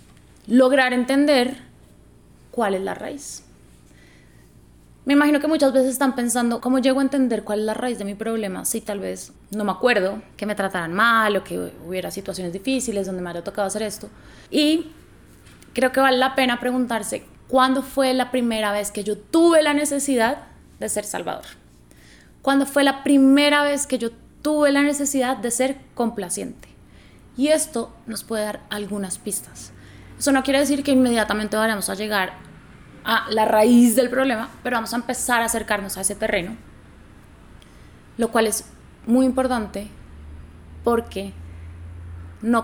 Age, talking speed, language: 20-39, 165 wpm, Spanish